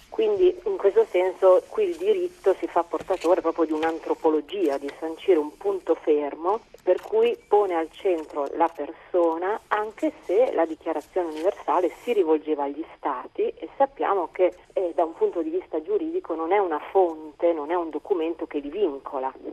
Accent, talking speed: native, 170 wpm